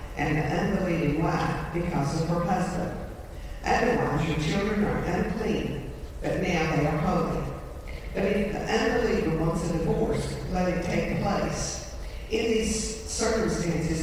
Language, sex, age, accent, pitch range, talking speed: English, female, 50-69, American, 150-185 Hz, 135 wpm